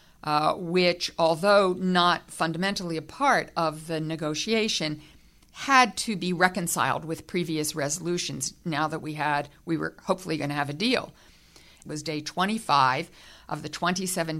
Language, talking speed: English, 150 wpm